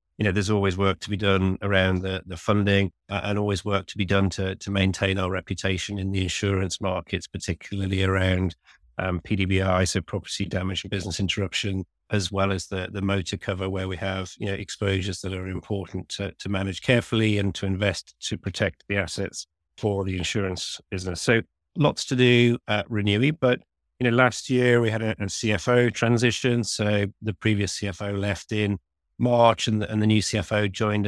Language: English